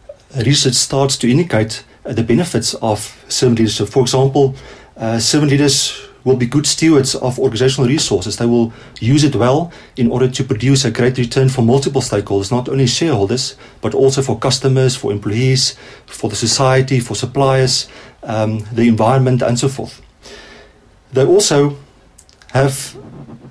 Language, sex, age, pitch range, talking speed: English, male, 40-59, 115-135 Hz, 155 wpm